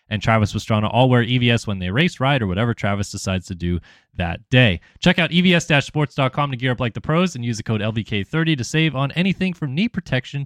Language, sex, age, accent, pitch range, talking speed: English, male, 20-39, American, 105-155 Hz, 225 wpm